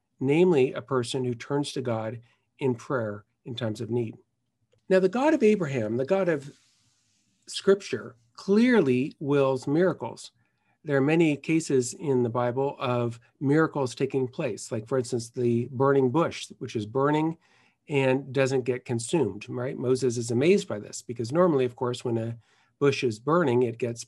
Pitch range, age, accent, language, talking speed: 120-145 Hz, 50-69, American, English, 165 wpm